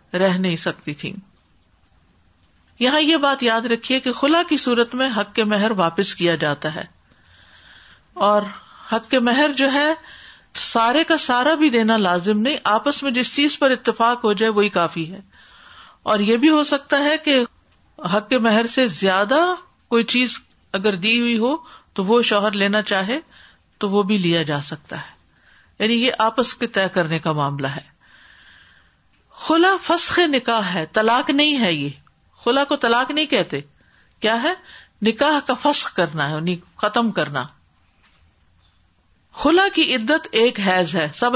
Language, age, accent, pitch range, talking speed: English, 50-69, Indian, 175-265 Hz, 165 wpm